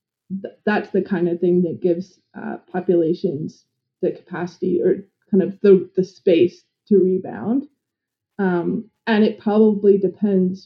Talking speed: 135 wpm